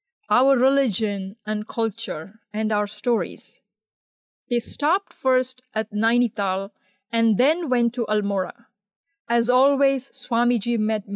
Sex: female